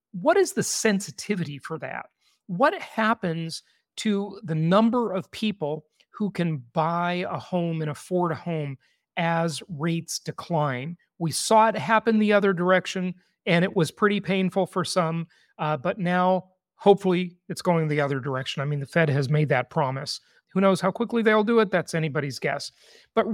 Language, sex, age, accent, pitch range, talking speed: English, male, 40-59, American, 160-200 Hz, 170 wpm